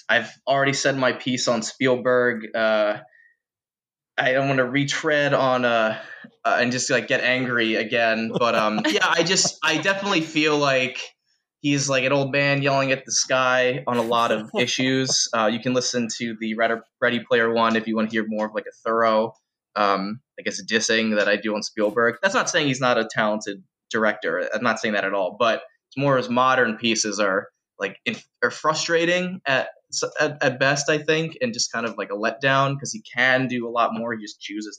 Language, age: English, 20-39